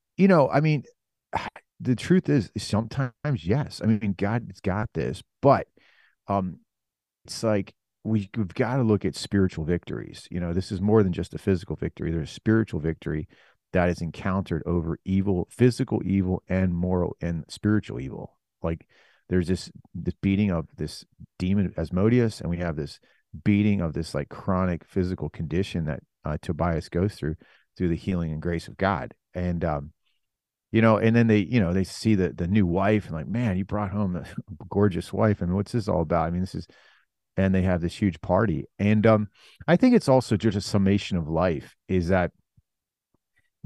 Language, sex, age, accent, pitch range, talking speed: English, male, 40-59, American, 85-105 Hz, 190 wpm